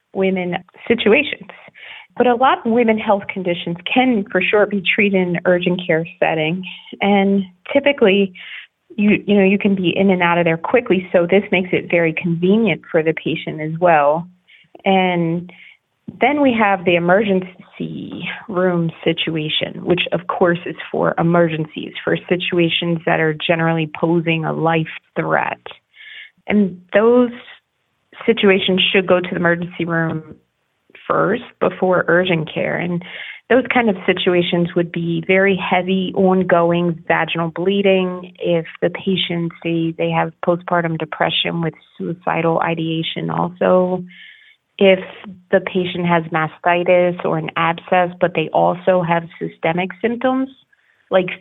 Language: English